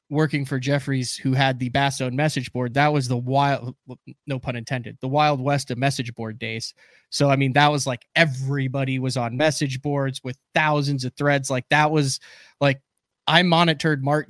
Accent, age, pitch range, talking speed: American, 20-39, 130-155 Hz, 195 wpm